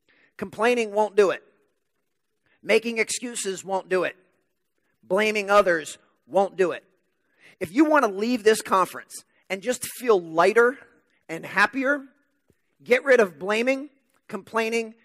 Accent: American